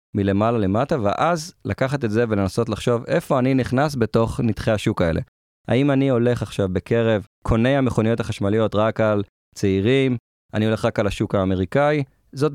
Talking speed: 160 wpm